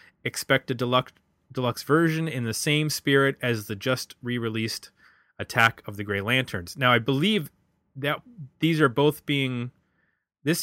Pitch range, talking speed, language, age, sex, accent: 110-135 Hz, 150 wpm, English, 20-39, male, American